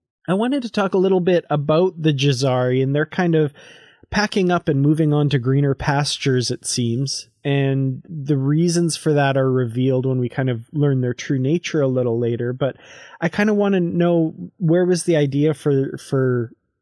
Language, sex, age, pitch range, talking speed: English, male, 20-39, 130-155 Hz, 195 wpm